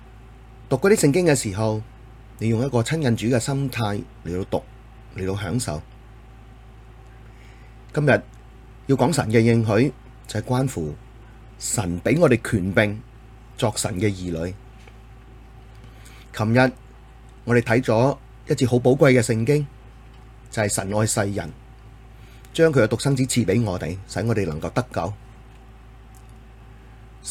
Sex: male